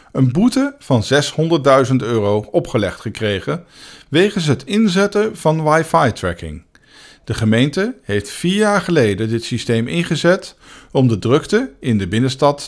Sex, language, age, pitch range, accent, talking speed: male, Dutch, 50-69, 110-170 Hz, Dutch, 130 wpm